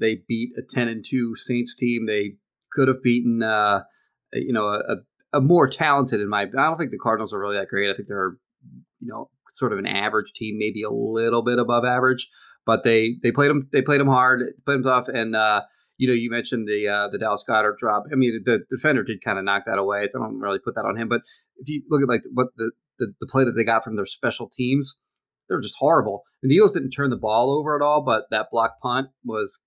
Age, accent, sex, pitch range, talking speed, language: 30-49, American, male, 115-135 Hz, 255 wpm, English